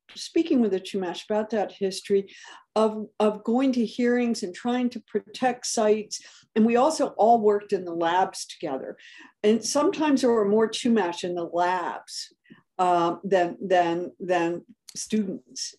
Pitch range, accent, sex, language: 185-225 Hz, American, female, English